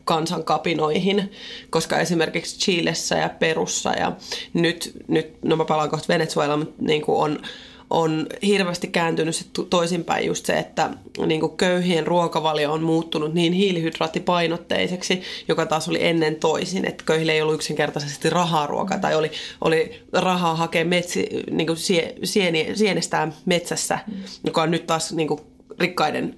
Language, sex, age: Finnish, female, 30-49